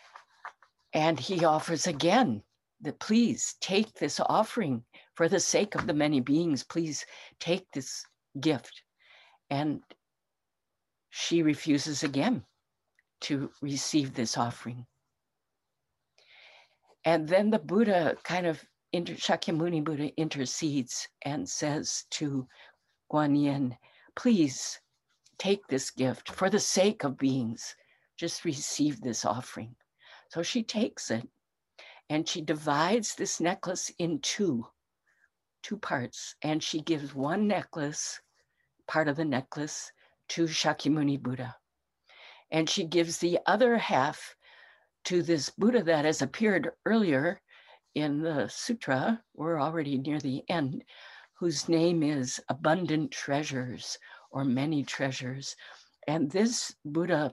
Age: 60-79